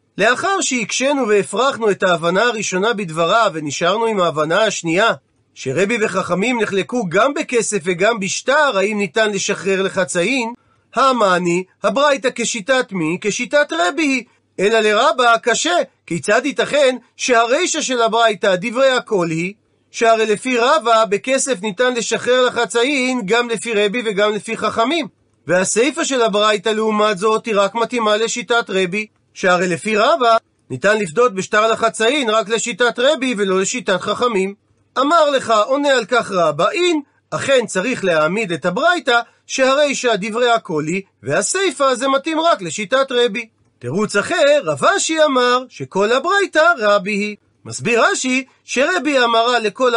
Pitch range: 200-255 Hz